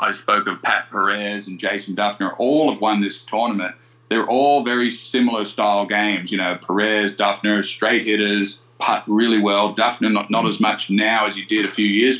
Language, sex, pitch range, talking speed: English, male, 100-115 Hz, 195 wpm